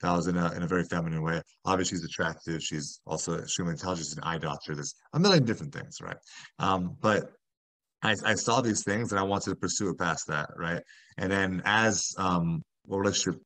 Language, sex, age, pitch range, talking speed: English, male, 30-49, 85-105 Hz, 210 wpm